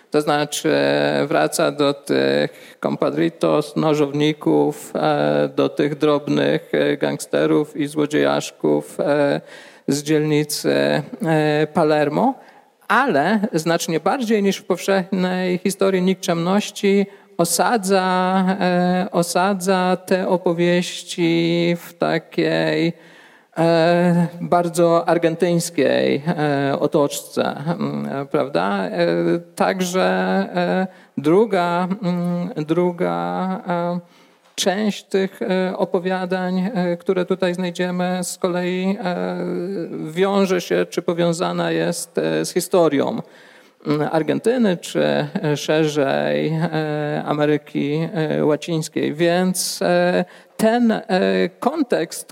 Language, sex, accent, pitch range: Polish, male, native, 145-190 Hz